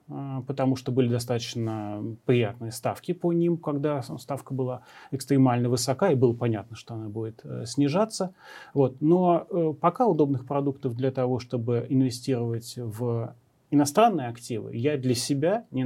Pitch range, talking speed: 120-145 Hz, 135 wpm